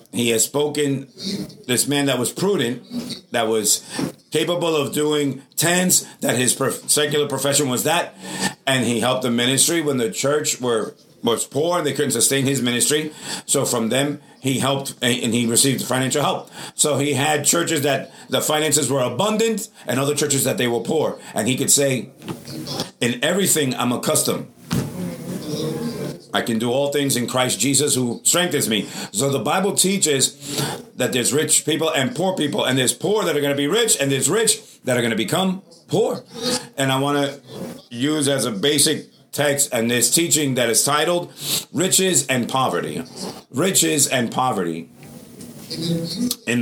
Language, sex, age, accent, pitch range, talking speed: English, male, 50-69, American, 130-160 Hz, 170 wpm